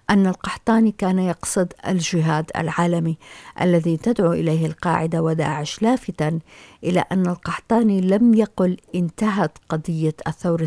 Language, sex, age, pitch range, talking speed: Arabic, female, 50-69, 165-190 Hz, 110 wpm